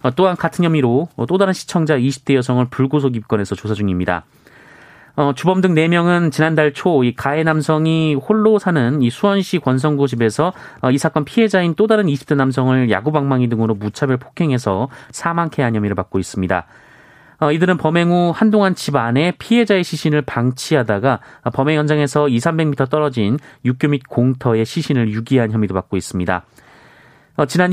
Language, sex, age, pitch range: Korean, male, 30-49, 120-165 Hz